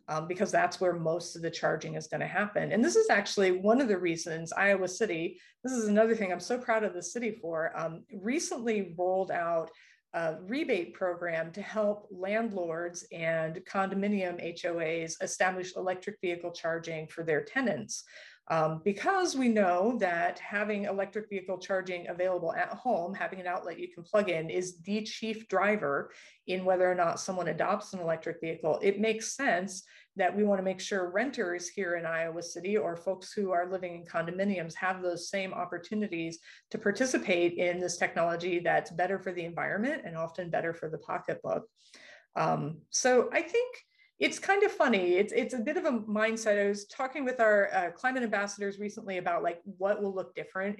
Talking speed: 185 wpm